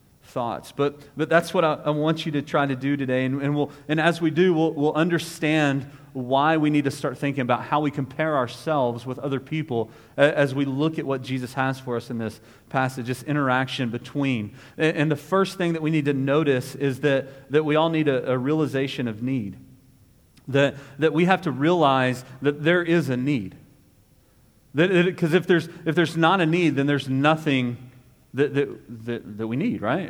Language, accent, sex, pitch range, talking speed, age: English, American, male, 130-155 Hz, 210 wpm, 40-59